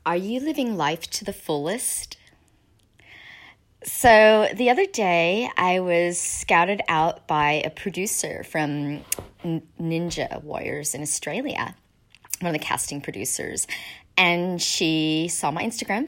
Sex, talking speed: female, 125 wpm